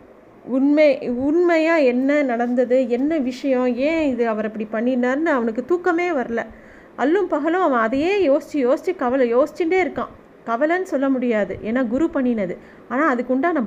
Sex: female